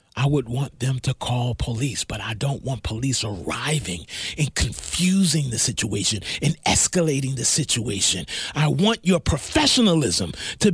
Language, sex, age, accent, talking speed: English, male, 40-59, American, 145 wpm